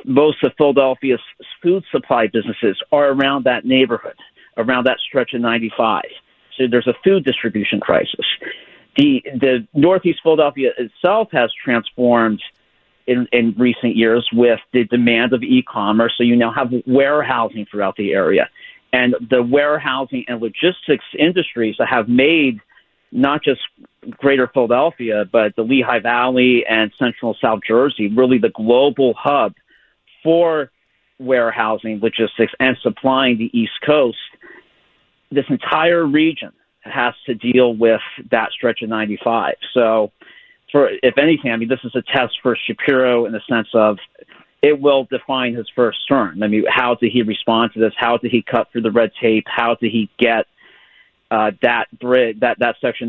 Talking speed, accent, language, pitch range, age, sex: 155 wpm, American, English, 115-130 Hz, 50-69, male